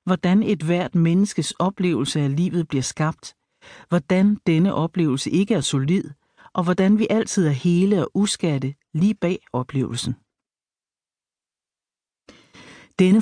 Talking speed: 125 wpm